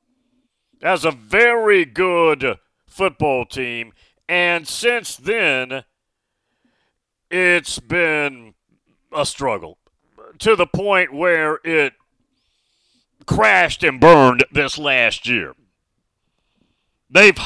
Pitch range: 135-200 Hz